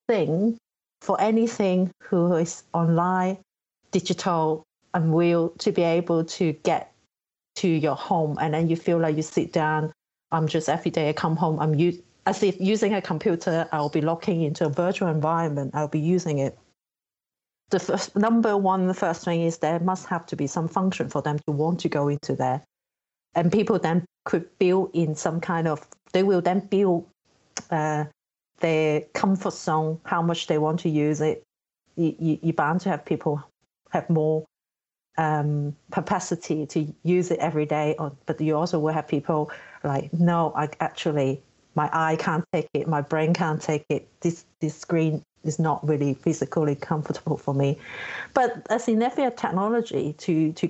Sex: female